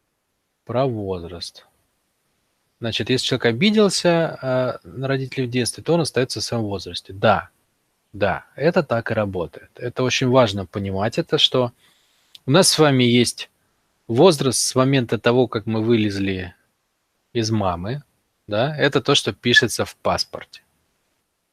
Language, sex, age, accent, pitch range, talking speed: Russian, male, 20-39, native, 105-140 Hz, 135 wpm